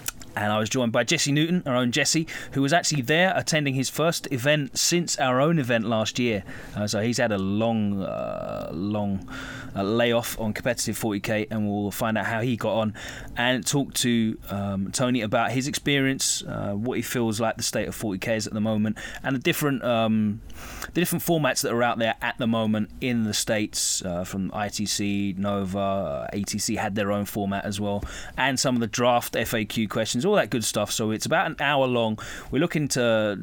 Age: 30-49